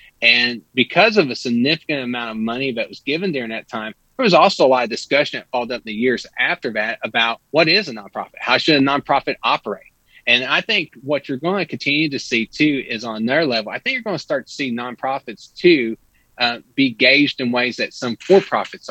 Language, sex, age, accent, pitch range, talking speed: English, male, 30-49, American, 120-140 Hz, 230 wpm